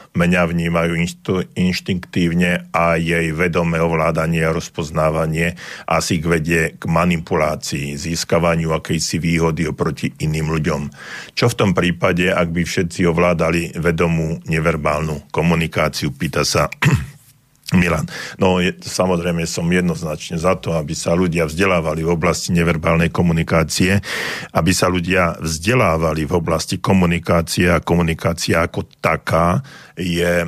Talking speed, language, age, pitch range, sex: 120 wpm, Slovak, 50-69, 80-90 Hz, male